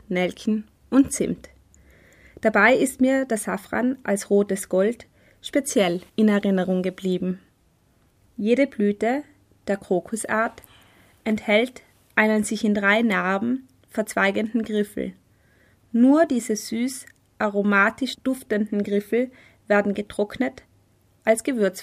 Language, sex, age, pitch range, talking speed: German, female, 20-39, 200-240 Hz, 100 wpm